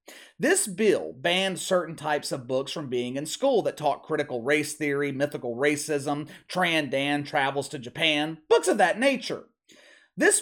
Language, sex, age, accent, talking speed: English, male, 30-49, American, 160 wpm